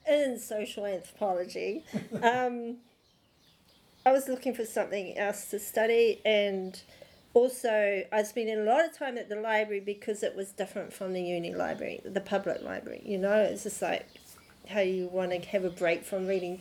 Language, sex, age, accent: English, female, 40-59, Australian